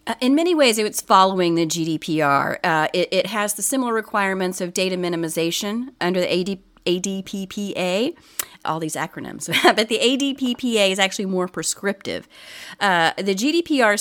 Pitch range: 175-225 Hz